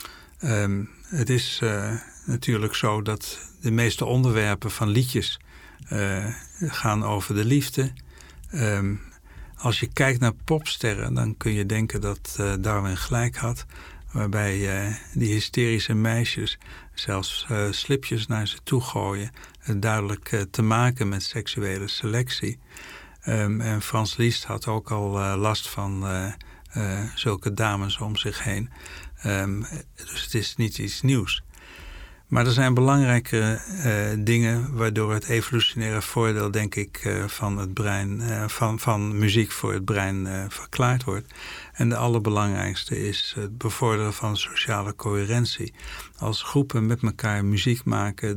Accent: Dutch